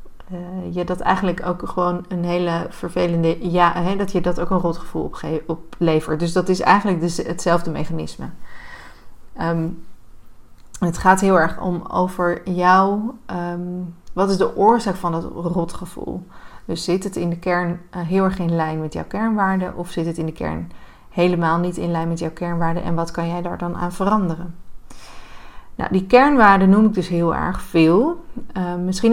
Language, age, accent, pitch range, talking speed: Dutch, 30-49, Dutch, 170-195 Hz, 180 wpm